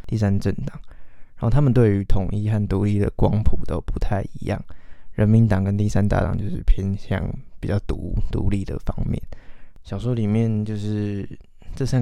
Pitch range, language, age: 95-110 Hz, Chinese, 20-39